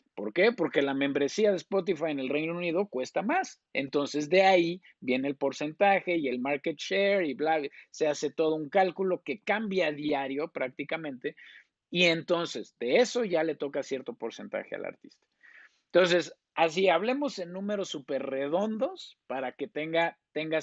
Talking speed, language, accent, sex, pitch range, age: 170 wpm, Spanish, Mexican, male, 150-200 Hz, 50-69